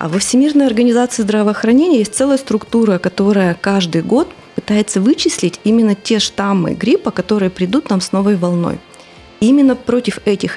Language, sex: Russian, female